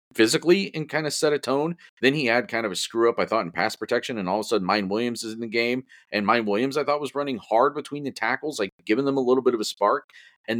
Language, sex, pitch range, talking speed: English, male, 90-120 Hz, 290 wpm